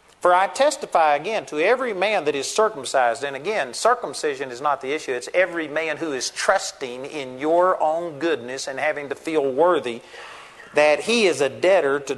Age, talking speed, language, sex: 50-69, 185 wpm, English, male